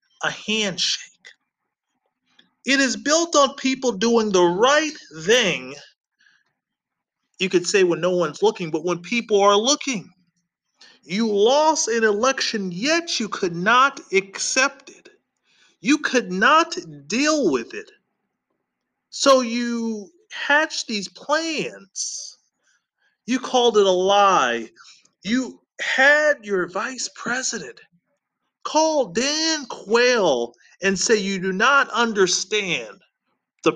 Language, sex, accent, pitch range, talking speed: English, male, American, 195-285 Hz, 115 wpm